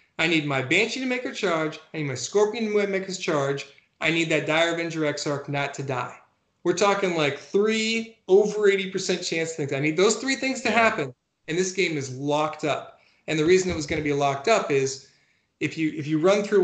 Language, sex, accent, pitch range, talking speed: English, male, American, 135-175 Hz, 225 wpm